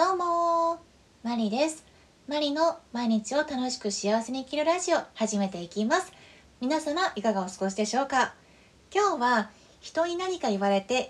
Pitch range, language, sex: 195-295 Hz, Japanese, female